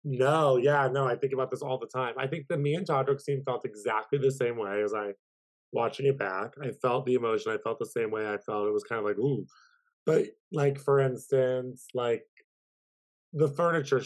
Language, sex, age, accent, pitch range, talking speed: English, male, 20-39, American, 125-150 Hz, 220 wpm